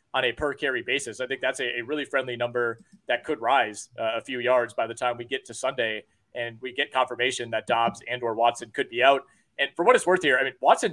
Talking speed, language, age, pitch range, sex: 265 wpm, English, 30-49, 125-150 Hz, male